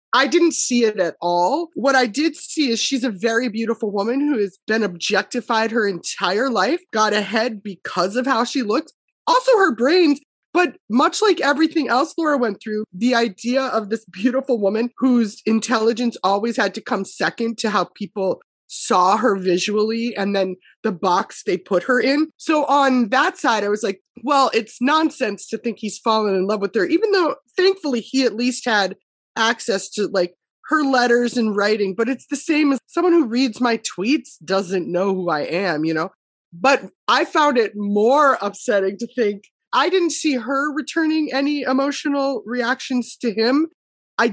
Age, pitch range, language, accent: 20-39, 215-290 Hz, English, American